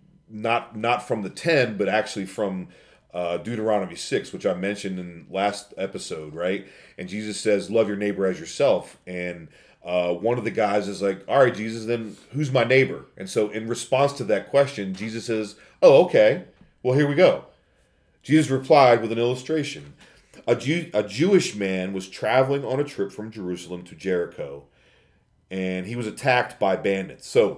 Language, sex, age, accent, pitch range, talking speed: English, male, 40-59, American, 95-130 Hz, 180 wpm